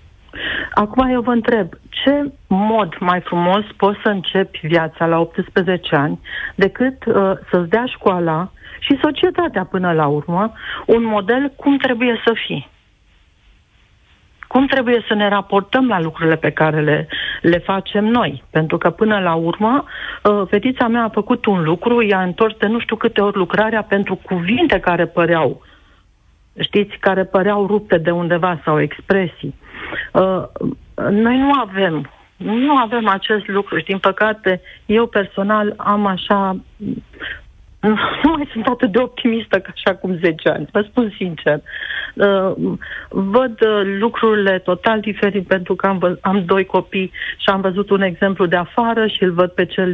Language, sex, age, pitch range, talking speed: Romanian, female, 50-69, 180-225 Hz, 155 wpm